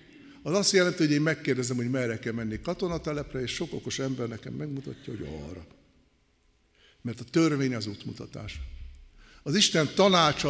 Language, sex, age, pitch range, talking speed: Hungarian, male, 60-79, 115-175 Hz, 155 wpm